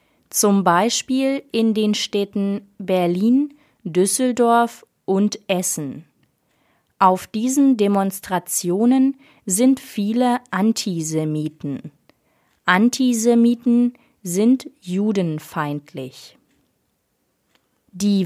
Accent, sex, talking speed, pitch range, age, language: German, female, 60 wpm, 180-240 Hz, 30-49, German